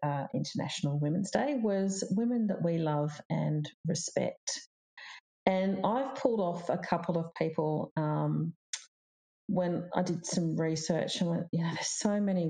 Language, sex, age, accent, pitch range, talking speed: English, female, 40-59, Australian, 150-170 Hz, 155 wpm